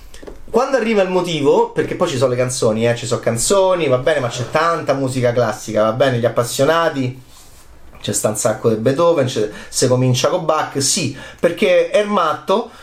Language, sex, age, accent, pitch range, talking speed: Italian, male, 30-49, native, 130-210 Hz, 185 wpm